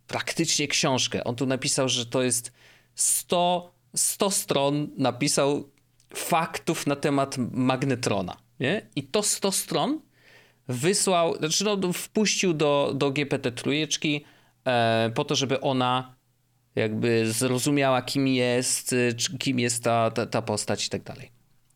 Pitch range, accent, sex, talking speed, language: 115-145 Hz, native, male, 120 wpm, Polish